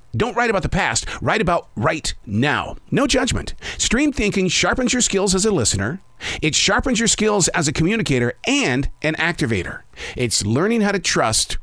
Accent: American